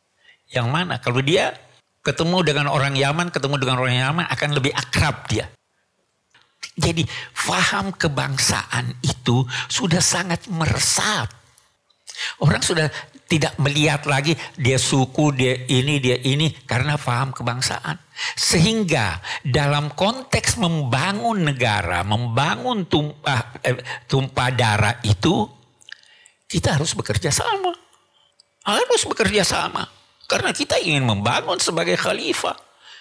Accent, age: native, 60-79